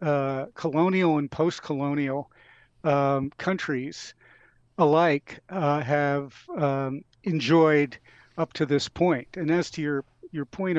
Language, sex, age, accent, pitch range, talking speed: English, male, 50-69, American, 135-160 Hz, 115 wpm